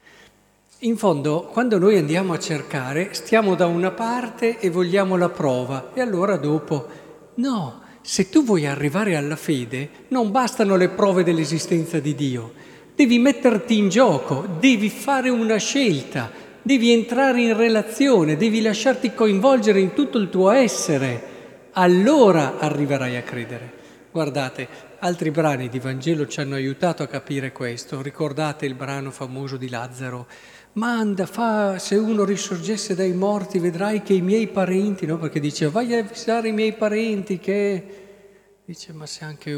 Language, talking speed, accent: Italian, 150 wpm, native